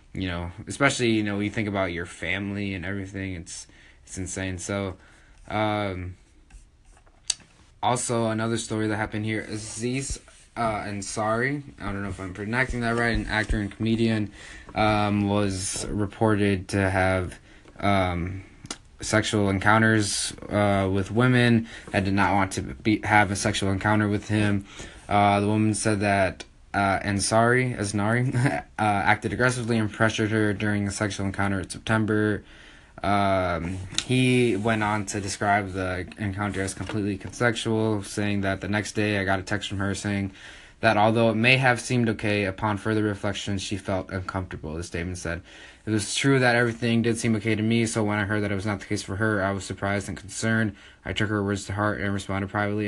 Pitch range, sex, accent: 95-110 Hz, male, American